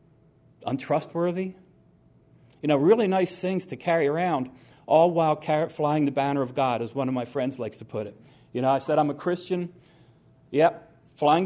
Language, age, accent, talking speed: English, 40-59, American, 180 wpm